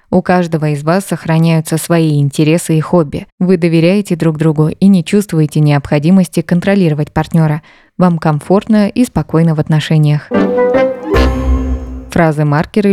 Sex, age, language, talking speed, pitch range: female, 20-39, Russian, 120 wpm, 160-180 Hz